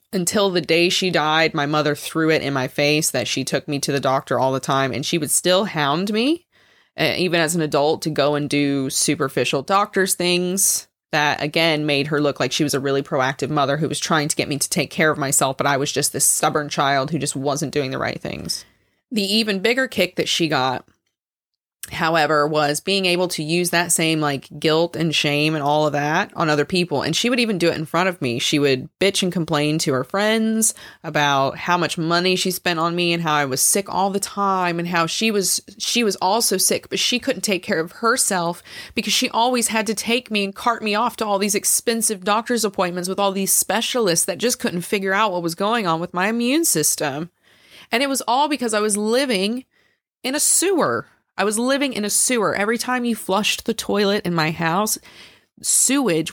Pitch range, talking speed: 155-215 Hz, 225 wpm